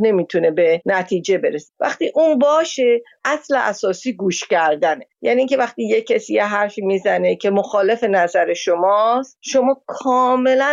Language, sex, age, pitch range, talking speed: Persian, female, 50-69, 195-275 Hz, 140 wpm